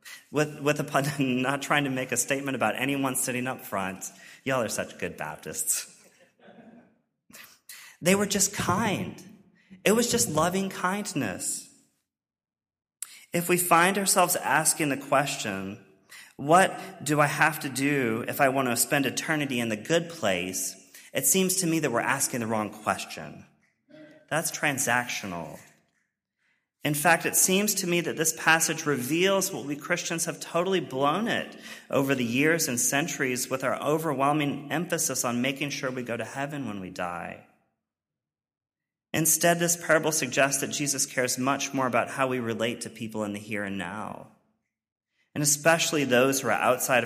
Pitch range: 115-160 Hz